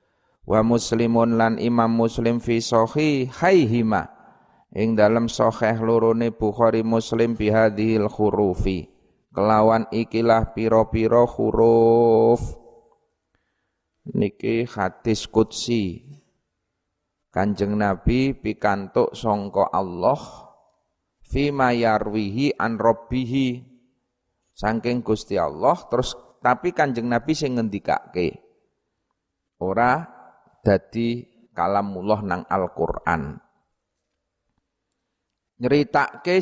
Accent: native